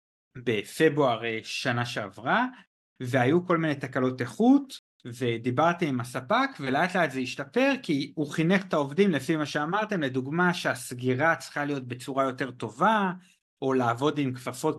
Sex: male